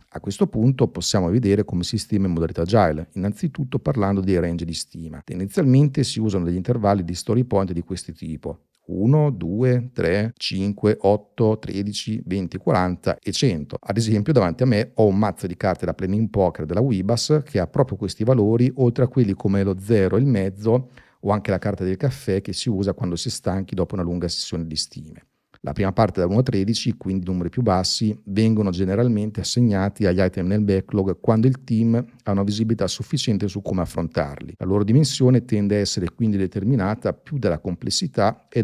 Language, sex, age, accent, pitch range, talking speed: Italian, male, 40-59, native, 95-120 Hz, 195 wpm